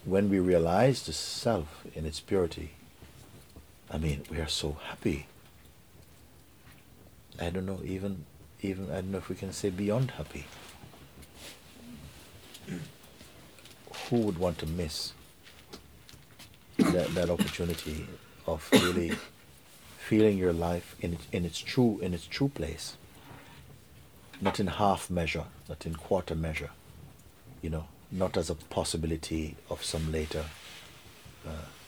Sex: male